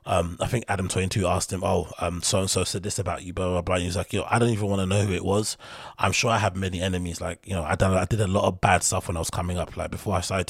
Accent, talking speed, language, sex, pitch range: British, 335 wpm, English, male, 90-110 Hz